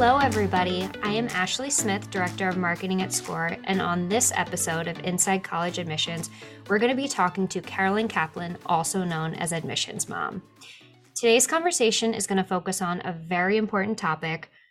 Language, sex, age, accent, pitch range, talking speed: English, female, 20-39, American, 175-215 Hz, 175 wpm